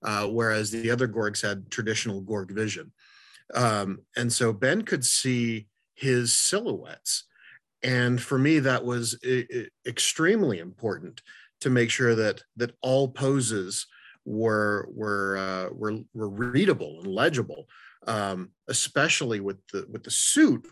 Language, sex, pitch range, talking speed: English, male, 105-125 Hz, 140 wpm